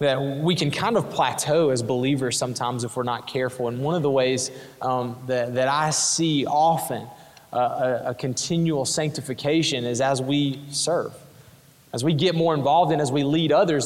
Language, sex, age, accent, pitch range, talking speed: English, male, 20-39, American, 130-155 Hz, 190 wpm